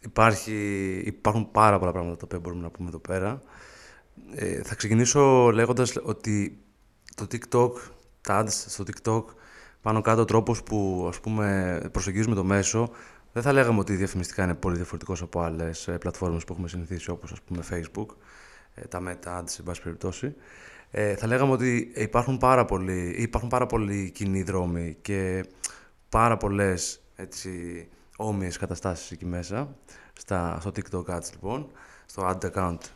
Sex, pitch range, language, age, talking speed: male, 90-110 Hz, Greek, 20-39, 150 wpm